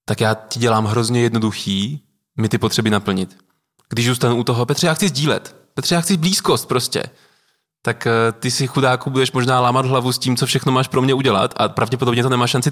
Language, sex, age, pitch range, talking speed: Czech, male, 20-39, 120-140 Hz, 210 wpm